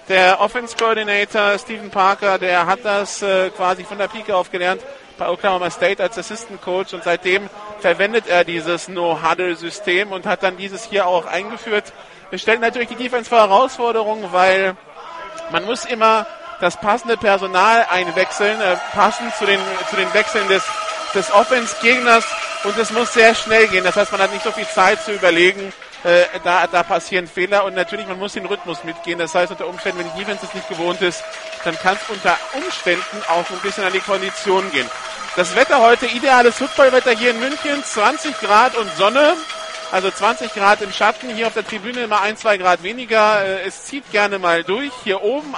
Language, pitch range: German, 185-230 Hz